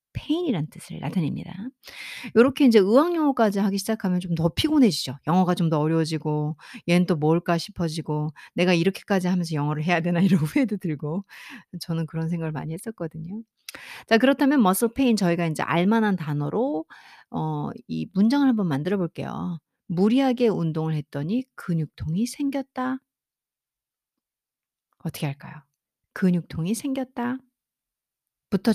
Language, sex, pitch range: Korean, female, 165-245 Hz